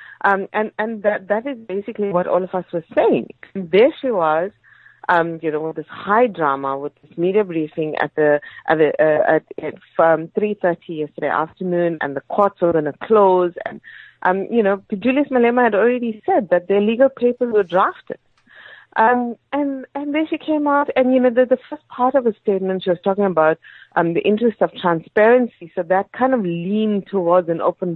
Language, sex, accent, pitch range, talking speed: English, female, Indian, 170-230 Hz, 205 wpm